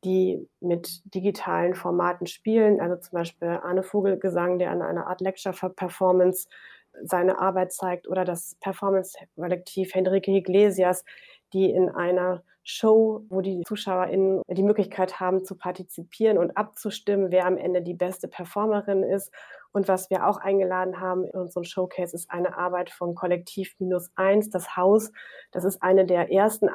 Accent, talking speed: German, 150 wpm